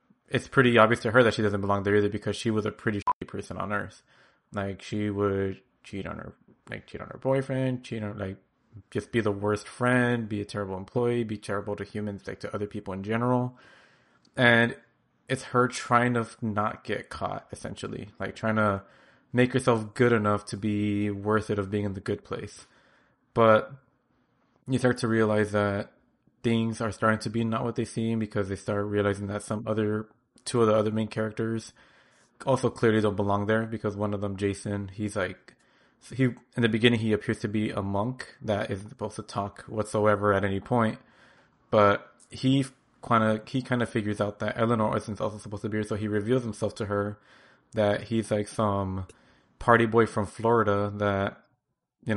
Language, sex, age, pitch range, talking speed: English, male, 20-39, 105-115 Hz, 195 wpm